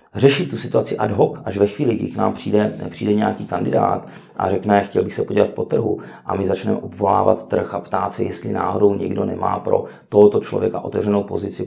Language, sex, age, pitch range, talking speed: Czech, male, 40-59, 100-120 Hz, 210 wpm